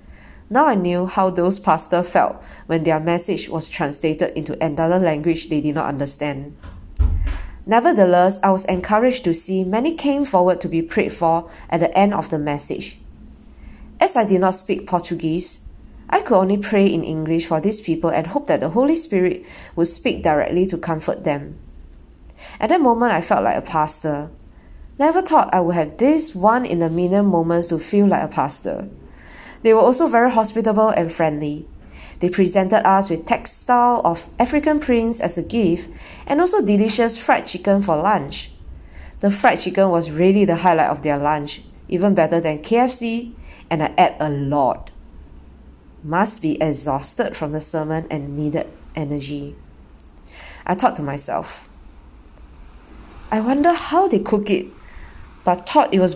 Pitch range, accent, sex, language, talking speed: 140-200 Hz, Malaysian, female, English, 170 wpm